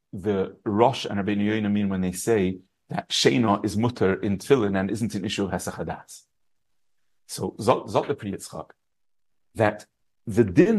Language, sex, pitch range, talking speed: English, male, 110-160 Hz, 145 wpm